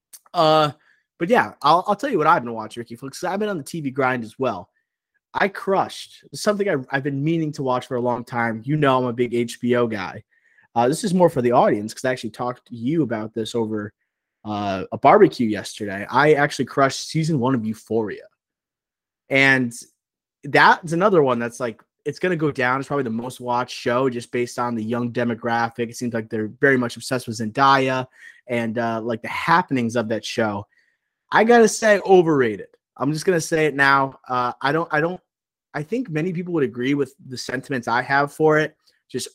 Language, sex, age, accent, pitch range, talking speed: English, male, 20-39, American, 120-150 Hz, 210 wpm